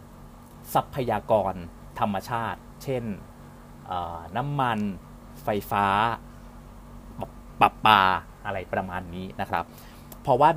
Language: Thai